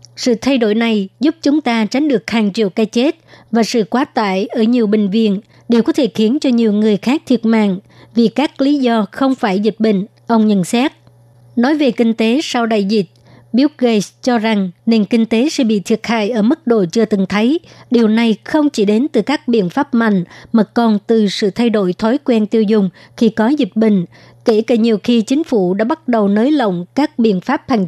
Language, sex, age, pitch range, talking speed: Vietnamese, male, 60-79, 210-240 Hz, 225 wpm